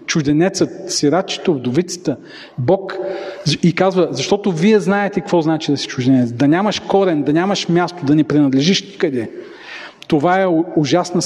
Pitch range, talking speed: 150-195 Hz, 145 wpm